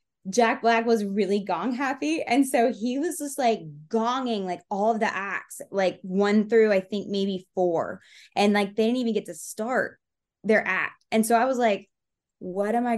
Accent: American